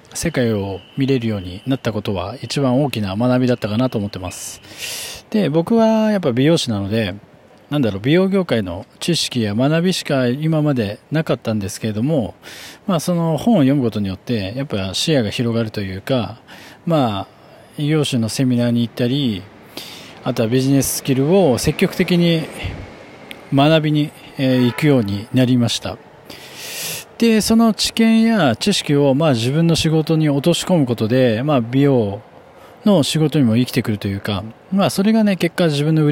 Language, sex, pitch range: Japanese, male, 115-155 Hz